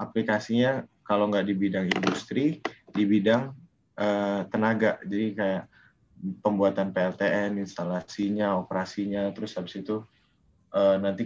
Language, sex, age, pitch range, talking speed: Indonesian, male, 20-39, 95-115 Hz, 110 wpm